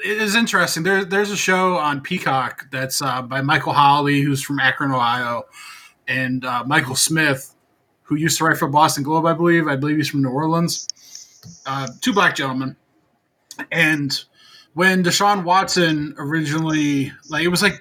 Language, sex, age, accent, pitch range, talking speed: English, male, 20-39, American, 135-175 Hz, 170 wpm